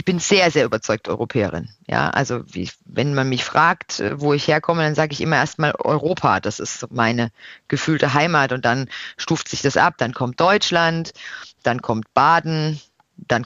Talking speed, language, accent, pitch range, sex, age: 180 wpm, German, German, 150-220 Hz, female, 40-59